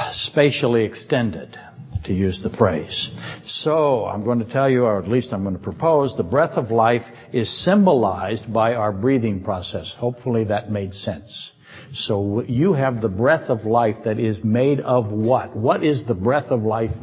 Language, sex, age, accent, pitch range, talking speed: English, male, 60-79, American, 110-135 Hz, 180 wpm